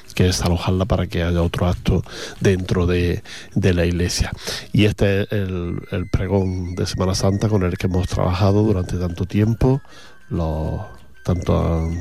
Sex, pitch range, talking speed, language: male, 90-105 Hz, 155 wpm, English